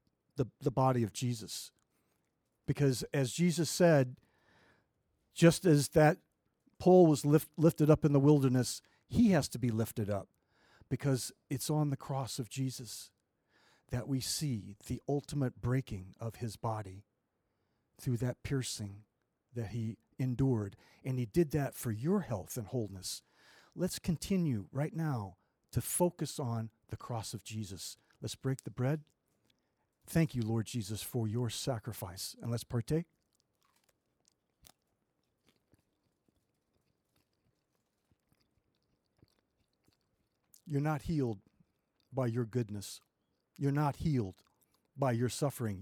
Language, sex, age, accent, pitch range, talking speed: English, male, 50-69, American, 115-145 Hz, 125 wpm